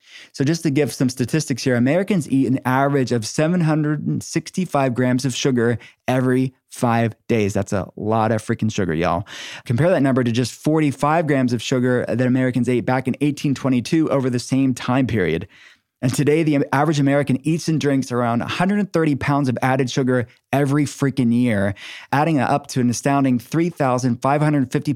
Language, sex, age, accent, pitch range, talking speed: English, male, 20-39, American, 120-145 Hz, 165 wpm